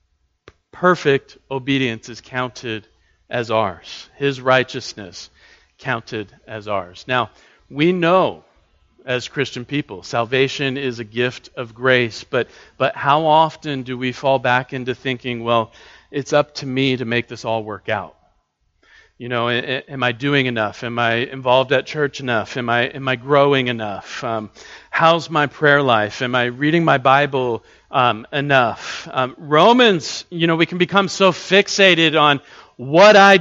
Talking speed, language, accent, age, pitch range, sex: 155 wpm, English, American, 40-59, 125-155 Hz, male